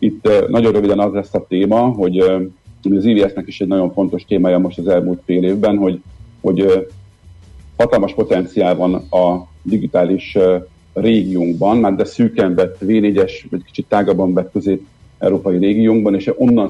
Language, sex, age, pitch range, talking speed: Hungarian, male, 50-69, 95-115 Hz, 160 wpm